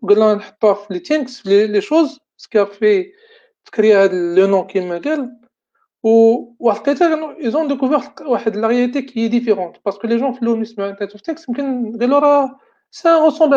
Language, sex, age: Arabic, male, 40-59